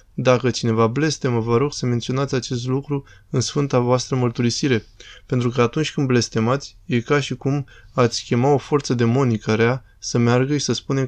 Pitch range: 115-140 Hz